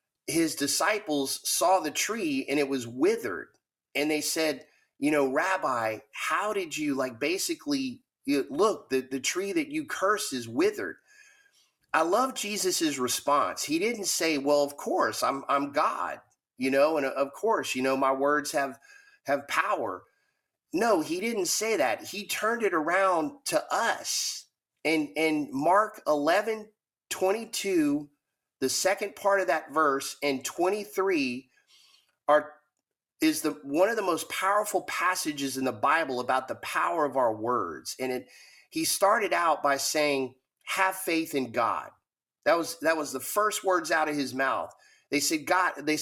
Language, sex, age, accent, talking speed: English, male, 30-49, American, 160 wpm